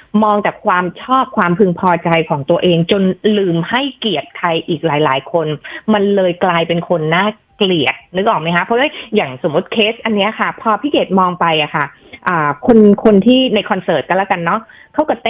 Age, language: 20-39, Thai